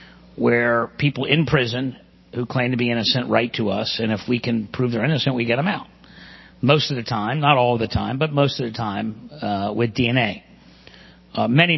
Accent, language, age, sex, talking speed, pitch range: American, English, 50-69, male, 215 wpm, 110-130 Hz